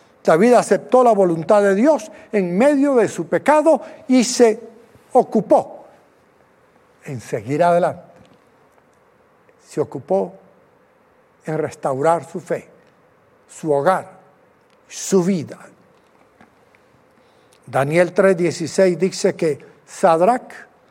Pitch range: 185-250 Hz